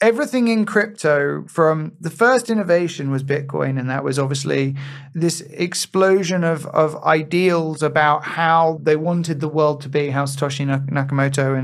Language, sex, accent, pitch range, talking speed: English, male, British, 150-185 Hz, 150 wpm